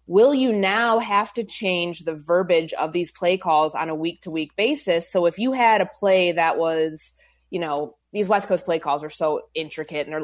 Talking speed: 210 wpm